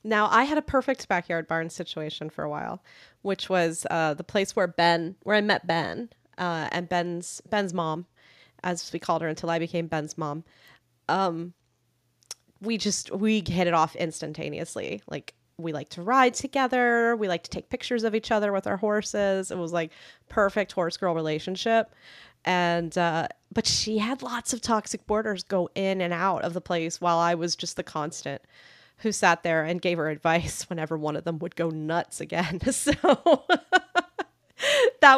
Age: 30-49